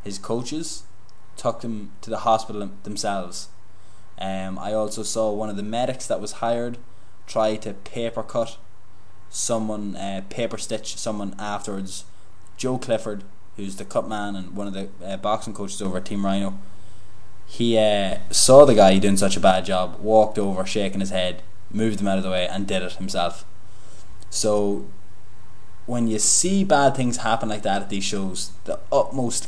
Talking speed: 175 wpm